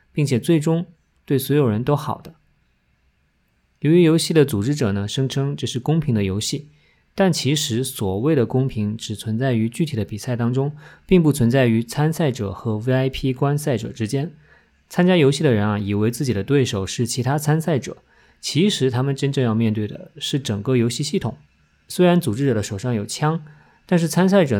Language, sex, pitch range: Chinese, male, 115-155 Hz